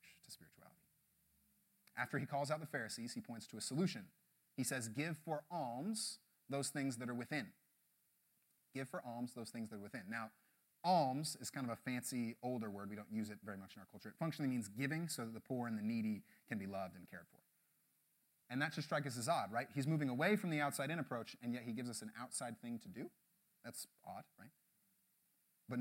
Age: 30-49